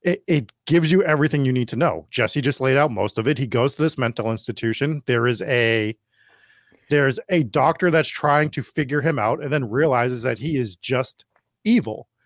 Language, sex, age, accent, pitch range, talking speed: English, male, 40-59, American, 120-155 Hz, 205 wpm